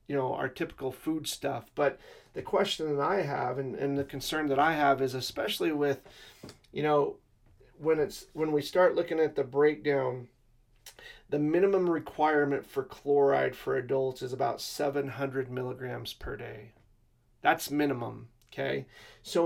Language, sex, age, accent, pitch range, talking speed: English, male, 30-49, American, 130-155 Hz, 155 wpm